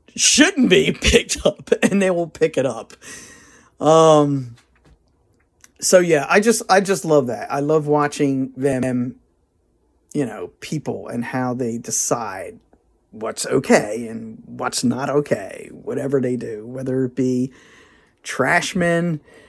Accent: American